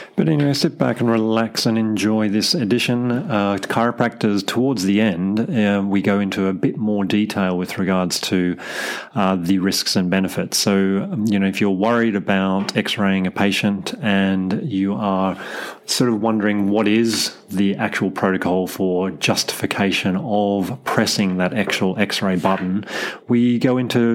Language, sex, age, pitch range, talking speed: English, male, 30-49, 95-120 Hz, 155 wpm